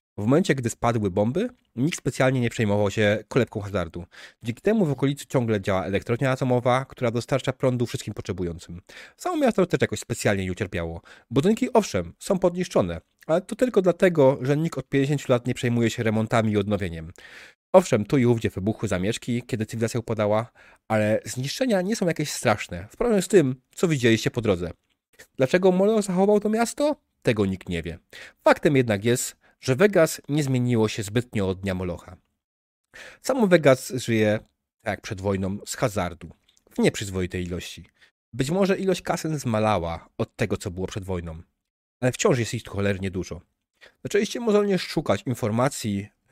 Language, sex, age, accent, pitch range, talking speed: Polish, male, 30-49, native, 100-145 Hz, 165 wpm